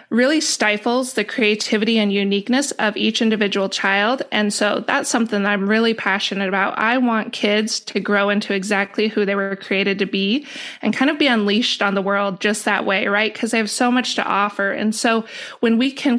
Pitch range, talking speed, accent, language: 200-240 Hz, 210 wpm, American, English